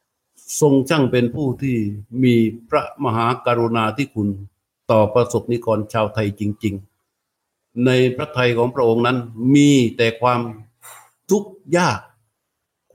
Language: Thai